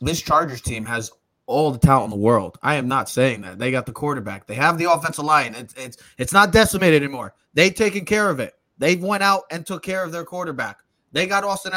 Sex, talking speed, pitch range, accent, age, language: male, 245 wpm, 150-200 Hz, American, 20-39, English